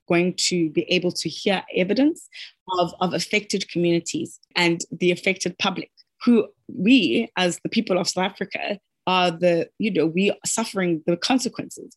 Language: English